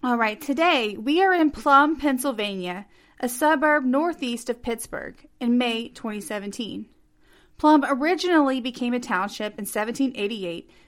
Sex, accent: female, American